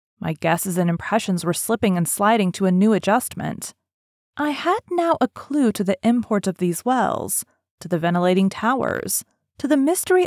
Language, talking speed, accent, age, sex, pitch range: English, 175 wpm, American, 30-49, female, 185-265 Hz